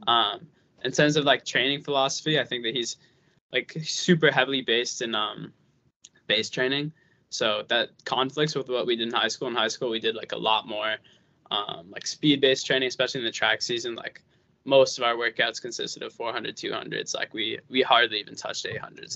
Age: 20-39